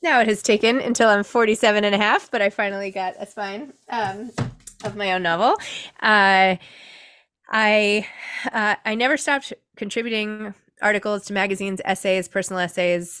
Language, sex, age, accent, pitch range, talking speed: English, female, 20-39, American, 165-215 Hz, 155 wpm